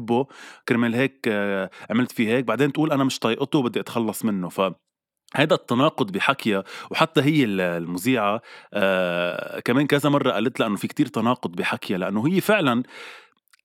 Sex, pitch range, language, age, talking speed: male, 100-140 Hz, Arabic, 20-39, 150 wpm